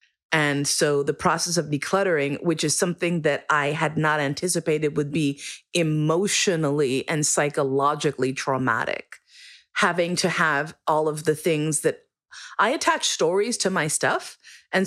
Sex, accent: female, American